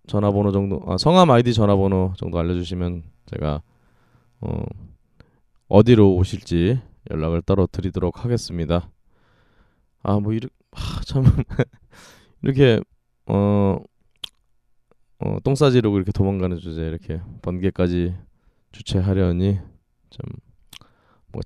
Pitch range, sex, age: 90-115 Hz, male, 20-39